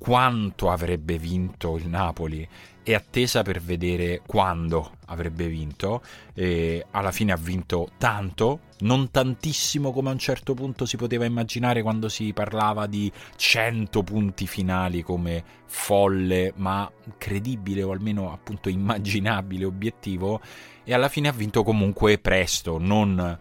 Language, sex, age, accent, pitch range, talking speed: Italian, male, 30-49, native, 90-110 Hz, 135 wpm